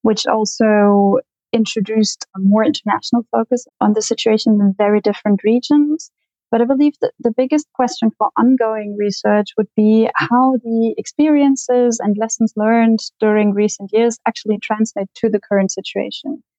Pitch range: 205-240 Hz